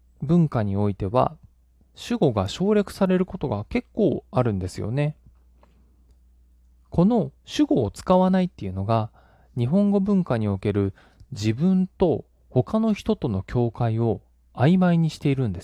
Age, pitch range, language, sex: 20-39, 95-160 Hz, Japanese, male